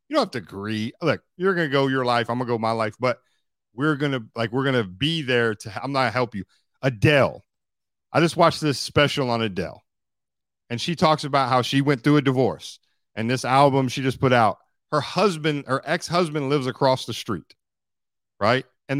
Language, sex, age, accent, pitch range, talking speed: English, male, 40-59, American, 120-160 Hz, 215 wpm